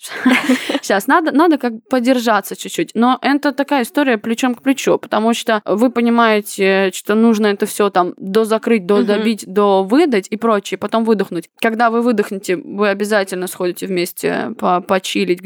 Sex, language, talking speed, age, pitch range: female, Russian, 150 wpm, 20-39, 205-255 Hz